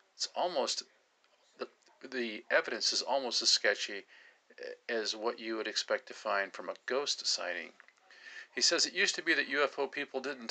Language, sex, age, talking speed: English, male, 50-69, 170 wpm